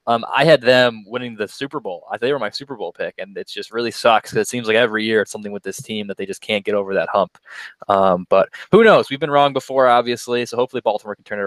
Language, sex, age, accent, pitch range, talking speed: English, male, 20-39, American, 110-140 Hz, 275 wpm